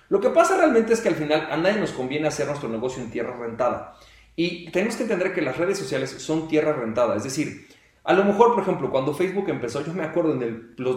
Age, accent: 30-49, Mexican